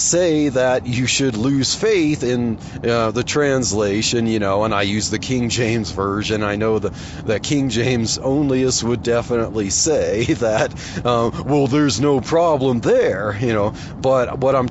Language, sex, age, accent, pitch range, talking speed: English, male, 40-59, American, 110-140 Hz, 165 wpm